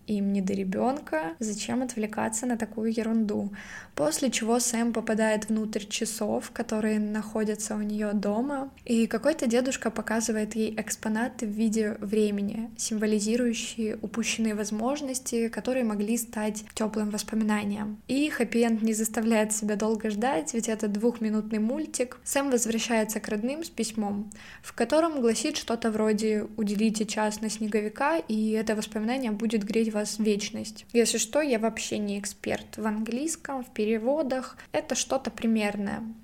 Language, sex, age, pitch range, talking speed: Russian, female, 20-39, 215-235 Hz, 135 wpm